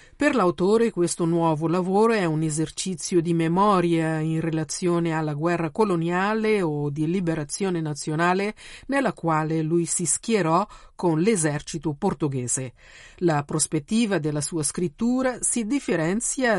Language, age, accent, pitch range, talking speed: Italian, 50-69, native, 160-215 Hz, 125 wpm